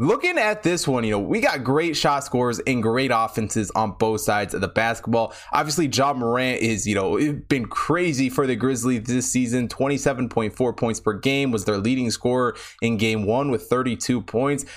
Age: 20-39